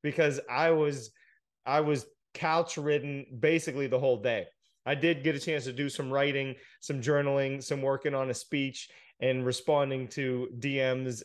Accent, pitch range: American, 130-160 Hz